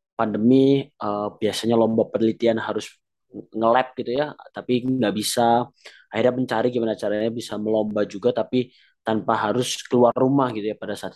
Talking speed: 150 wpm